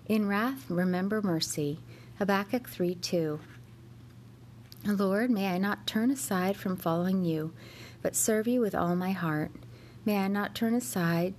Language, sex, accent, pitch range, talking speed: English, female, American, 165-210 Hz, 140 wpm